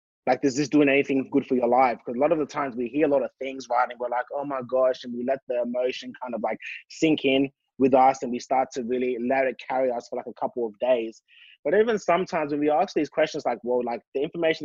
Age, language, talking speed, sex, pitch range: 20-39, English, 280 wpm, male, 125-150 Hz